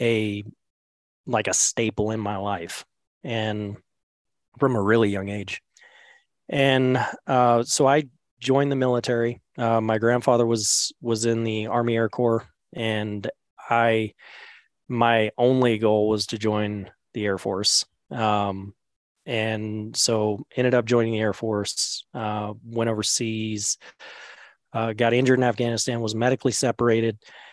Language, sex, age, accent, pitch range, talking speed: English, male, 30-49, American, 105-120 Hz, 135 wpm